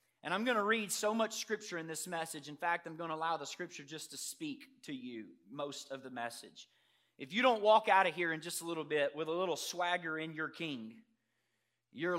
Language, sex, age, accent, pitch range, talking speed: English, male, 30-49, American, 145-205 Hz, 235 wpm